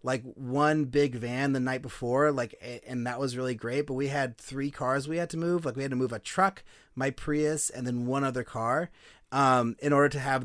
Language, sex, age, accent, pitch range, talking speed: English, male, 30-49, American, 120-145 Hz, 235 wpm